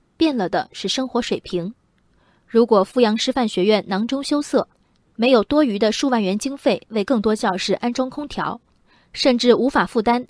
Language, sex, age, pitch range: Chinese, female, 20-39, 200-260 Hz